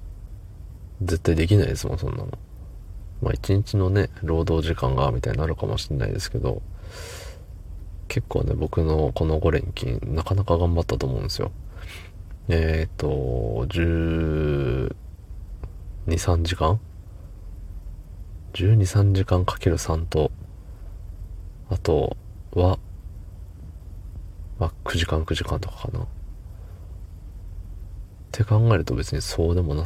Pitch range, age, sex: 80-95 Hz, 40-59, male